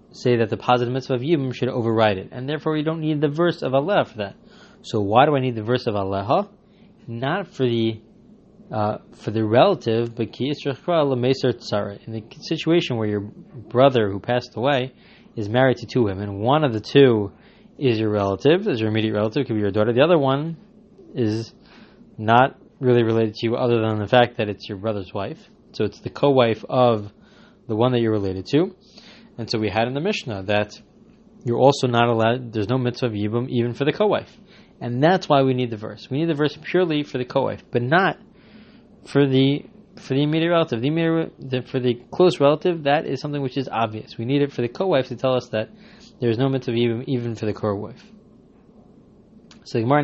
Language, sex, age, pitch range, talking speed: English, male, 20-39, 115-150 Hz, 210 wpm